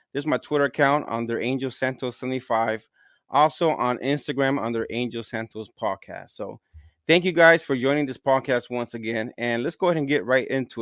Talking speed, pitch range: 190 wpm, 125-165 Hz